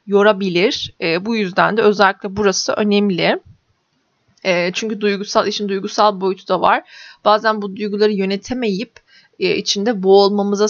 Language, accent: Turkish, native